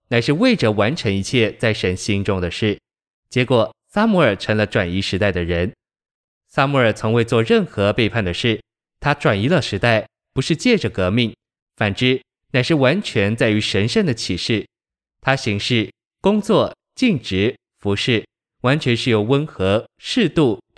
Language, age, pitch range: Chinese, 20-39, 105-130 Hz